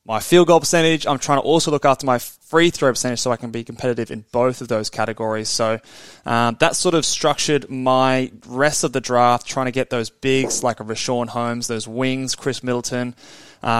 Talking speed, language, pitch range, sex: 210 wpm, English, 115-140 Hz, male